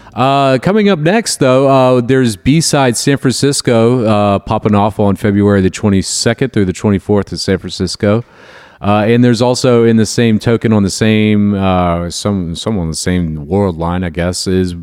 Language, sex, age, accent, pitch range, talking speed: English, male, 40-59, American, 85-115 Hz, 185 wpm